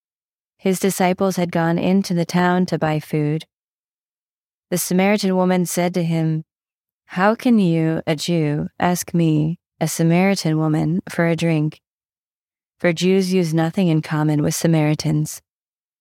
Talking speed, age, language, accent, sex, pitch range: 140 wpm, 30-49, English, American, female, 155-180 Hz